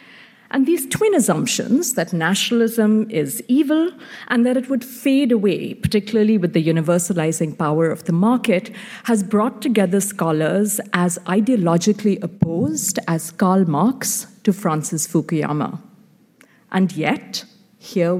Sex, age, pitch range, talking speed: female, 50-69, 180-235 Hz, 125 wpm